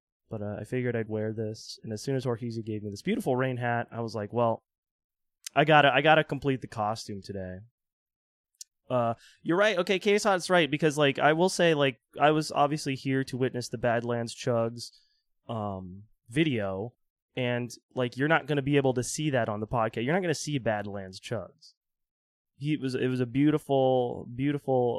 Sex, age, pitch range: male, 20-39, 105-135 Hz